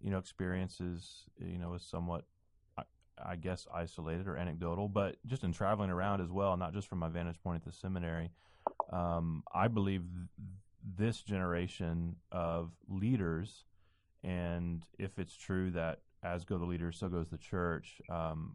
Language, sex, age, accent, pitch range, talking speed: English, male, 30-49, American, 85-100 Hz, 160 wpm